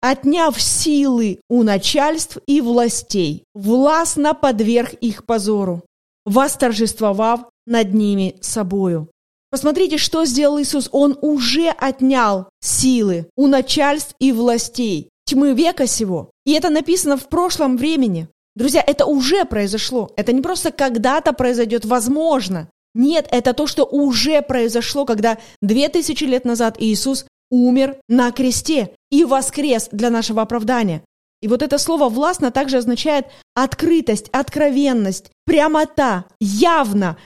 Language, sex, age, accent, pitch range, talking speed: Russian, female, 20-39, native, 220-290 Hz, 120 wpm